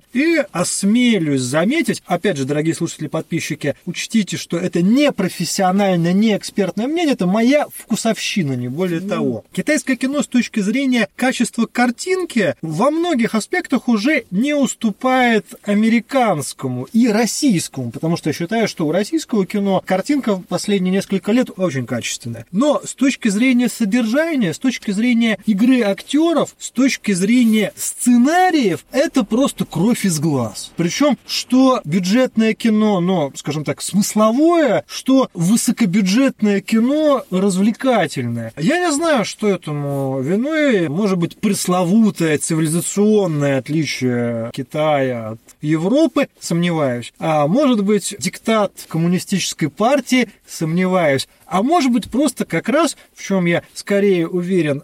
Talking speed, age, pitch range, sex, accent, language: 125 wpm, 30-49, 170-250 Hz, male, native, Russian